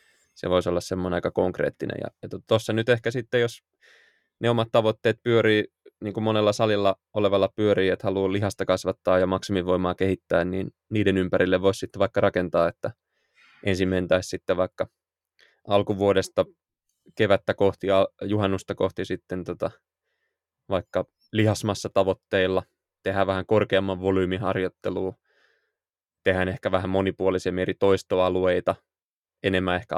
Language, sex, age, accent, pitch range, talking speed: Finnish, male, 20-39, native, 95-105 Hz, 125 wpm